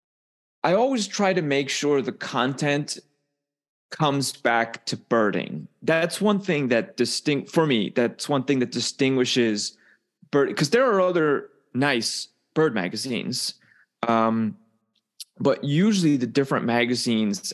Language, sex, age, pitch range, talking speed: English, male, 20-39, 115-150 Hz, 130 wpm